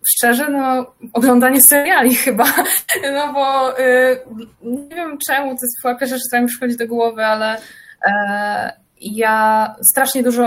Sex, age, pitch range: female, 20-39, 200-240 Hz